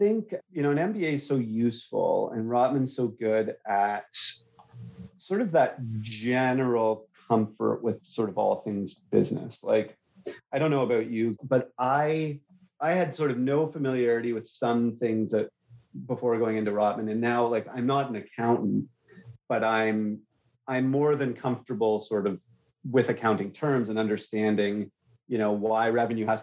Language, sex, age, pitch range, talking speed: English, male, 30-49, 110-130 Hz, 165 wpm